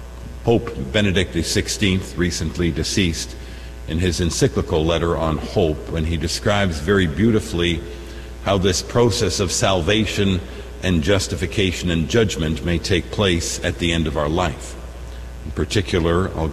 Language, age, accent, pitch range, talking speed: English, 50-69, American, 75-100 Hz, 135 wpm